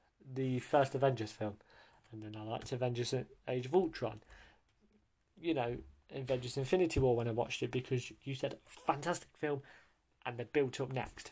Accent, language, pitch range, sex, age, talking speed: British, English, 120-150 Hz, male, 20-39, 165 wpm